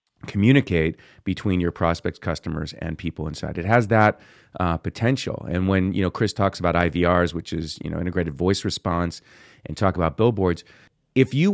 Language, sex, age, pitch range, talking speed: English, male, 30-49, 85-110 Hz, 175 wpm